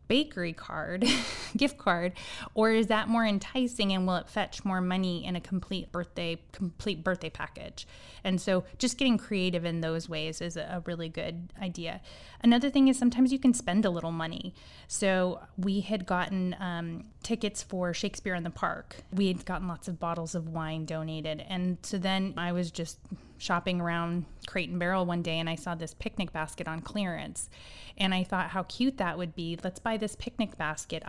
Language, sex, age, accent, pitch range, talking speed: English, female, 20-39, American, 170-210 Hz, 190 wpm